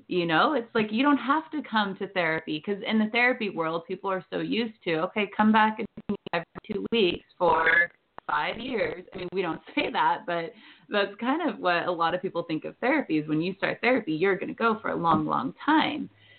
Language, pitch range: English, 170-225 Hz